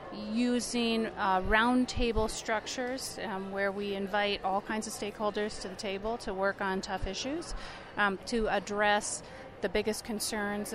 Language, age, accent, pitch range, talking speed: English, 30-49, American, 190-215 Hz, 145 wpm